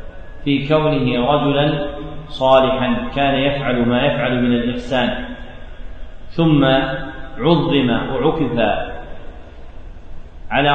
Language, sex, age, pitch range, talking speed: Arabic, male, 40-59, 120-140 Hz, 80 wpm